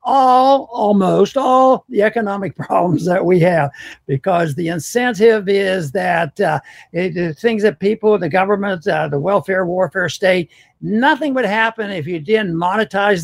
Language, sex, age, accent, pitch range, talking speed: English, male, 60-79, American, 185-235 Hz, 150 wpm